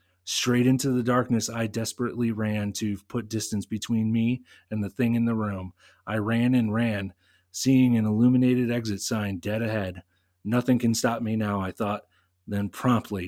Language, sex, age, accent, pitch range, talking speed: English, male, 30-49, American, 100-120 Hz, 170 wpm